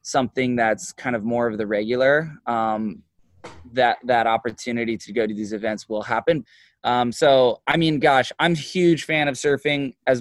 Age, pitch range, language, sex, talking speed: 20-39, 125-150 Hz, English, male, 180 wpm